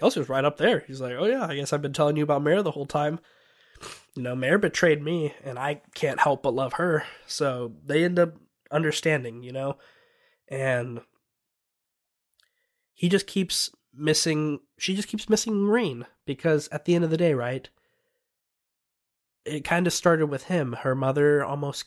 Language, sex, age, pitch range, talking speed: English, male, 20-39, 125-170 Hz, 180 wpm